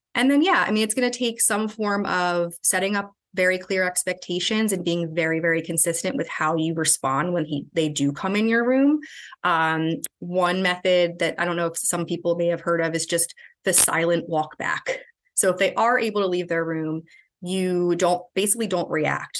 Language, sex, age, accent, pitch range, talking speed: English, female, 20-39, American, 165-200 Hz, 205 wpm